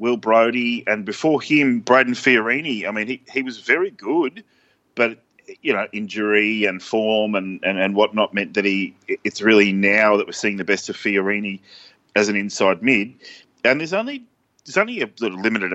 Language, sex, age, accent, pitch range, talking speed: English, male, 30-49, Australian, 100-125 Hz, 185 wpm